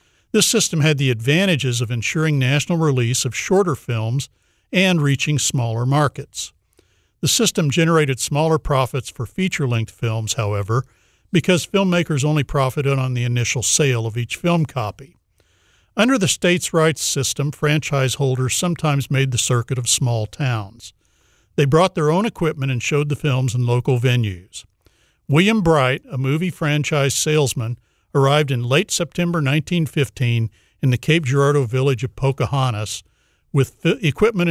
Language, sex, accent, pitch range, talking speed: English, male, American, 120-155 Hz, 145 wpm